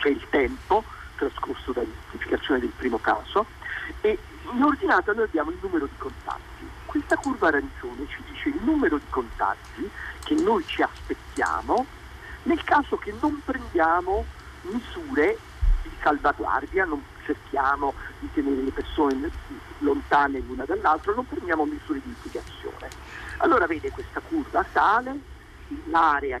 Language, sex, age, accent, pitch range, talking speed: Italian, male, 50-69, native, 255-365 Hz, 130 wpm